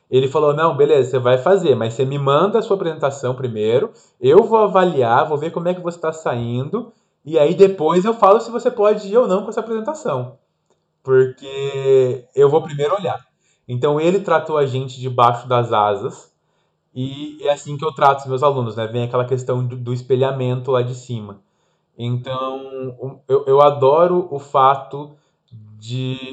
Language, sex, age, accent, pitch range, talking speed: Portuguese, male, 20-39, Brazilian, 130-170 Hz, 180 wpm